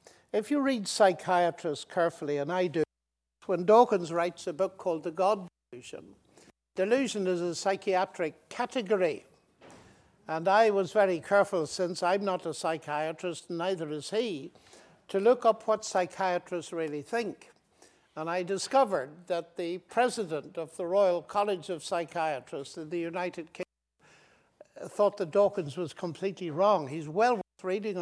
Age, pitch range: 60-79, 160-200 Hz